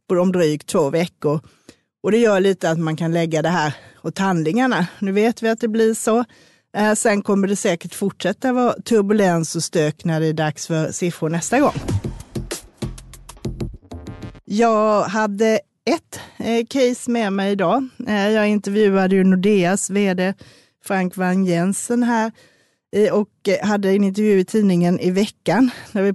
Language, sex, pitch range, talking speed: Swedish, female, 165-210 Hz, 150 wpm